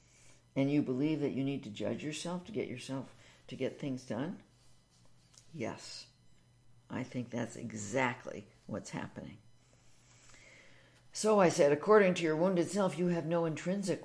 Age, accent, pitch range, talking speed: 60-79, American, 115-150 Hz, 150 wpm